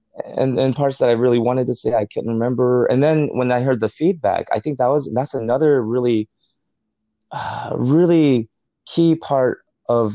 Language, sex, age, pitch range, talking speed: English, male, 20-39, 105-125 Hz, 190 wpm